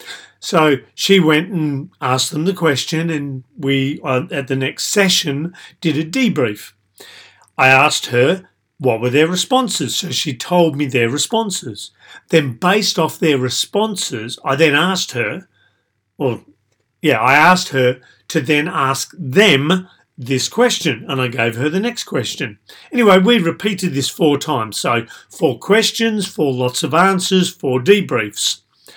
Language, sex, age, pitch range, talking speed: English, male, 40-59, 130-180 Hz, 150 wpm